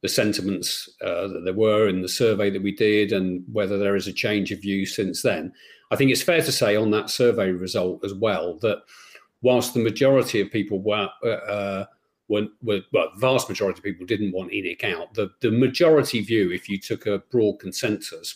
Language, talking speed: English, 205 wpm